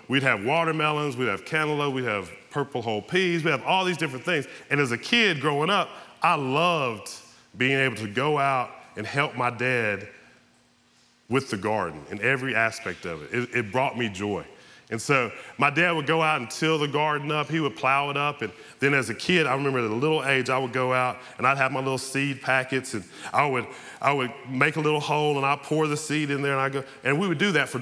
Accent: American